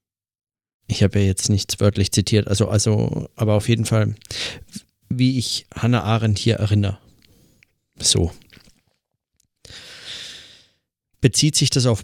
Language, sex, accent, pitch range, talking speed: German, male, German, 105-125 Hz, 110 wpm